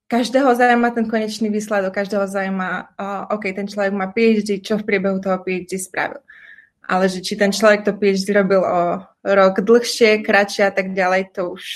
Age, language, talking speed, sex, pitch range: 20-39, Slovak, 185 wpm, female, 190-225 Hz